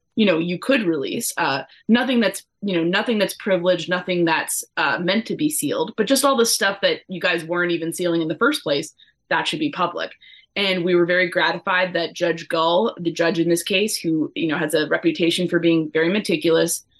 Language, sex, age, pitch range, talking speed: English, female, 20-39, 170-210 Hz, 220 wpm